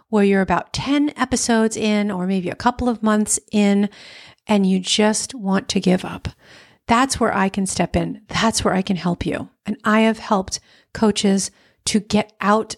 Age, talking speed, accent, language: 40-59, 190 wpm, American, English